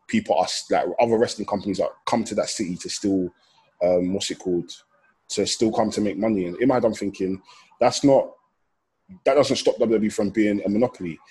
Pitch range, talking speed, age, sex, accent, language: 100-125 Hz, 200 wpm, 20-39, male, British, English